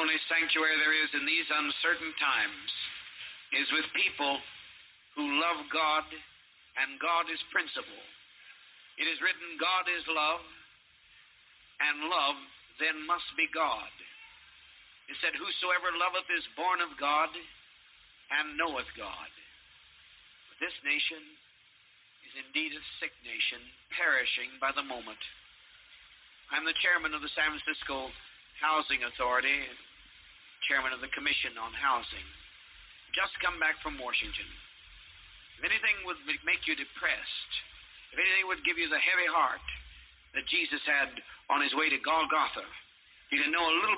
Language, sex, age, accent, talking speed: English, male, 60-79, American, 135 wpm